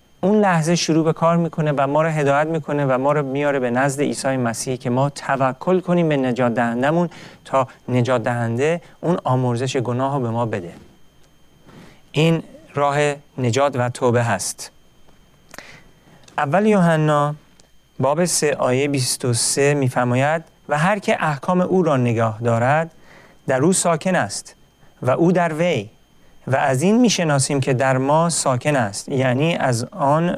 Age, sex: 40-59, male